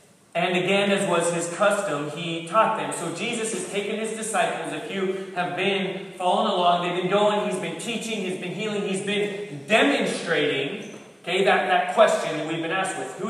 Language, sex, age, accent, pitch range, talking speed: English, male, 30-49, American, 170-205 Hz, 190 wpm